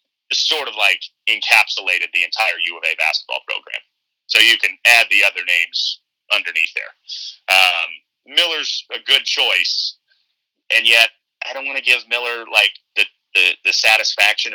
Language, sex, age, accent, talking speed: English, male, 30-49, American, 155 wpm